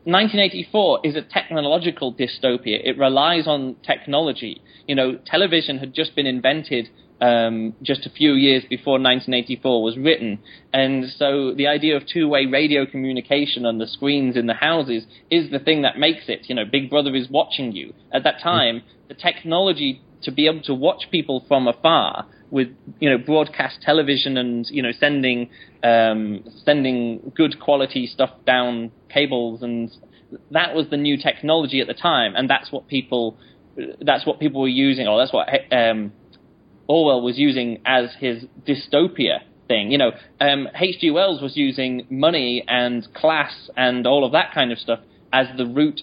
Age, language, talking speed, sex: 20-39, English, 170 wpm, male